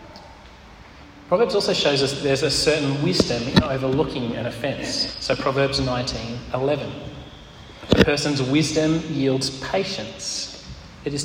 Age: 30-49